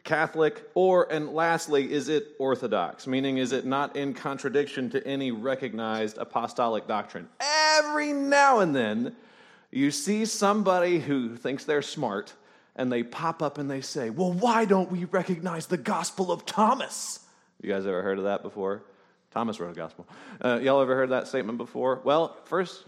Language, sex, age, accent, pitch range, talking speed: English, male, 30-49, American, 120-190 Hz, 170 wpm